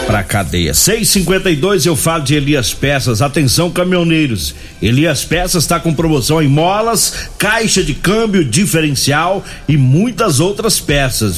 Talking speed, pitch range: 130 wpm, 135-190 Hz